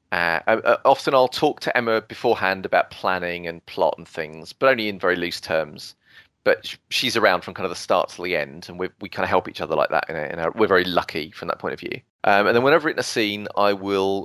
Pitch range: 95-125 Hz